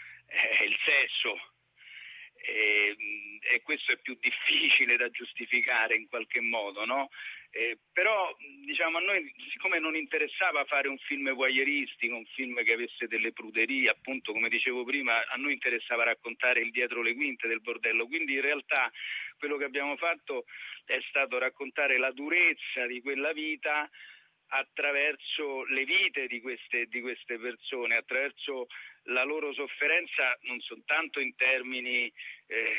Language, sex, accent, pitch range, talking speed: Italian, male, native, 125-160 Hz, 145 wpm